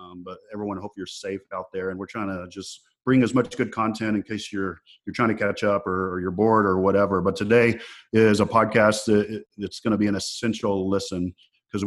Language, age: English, 40-59